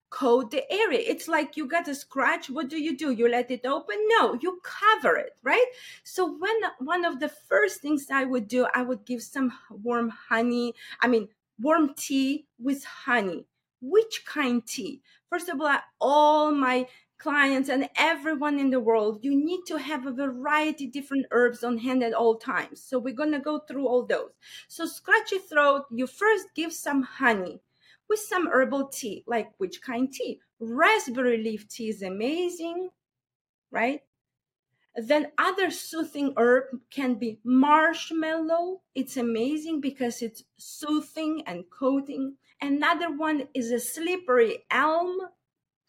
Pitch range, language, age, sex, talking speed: 245-335 Hz, English, 30-49, female, 155 wpm